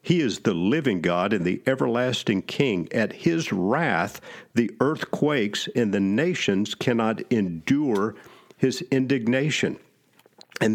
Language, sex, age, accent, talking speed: English, male, 50-69, American, 125 wpm